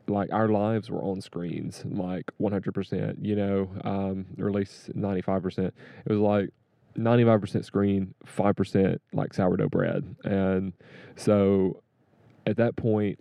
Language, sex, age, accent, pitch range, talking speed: English, male, 20-39, American, 95-105 Hz, 130 wpm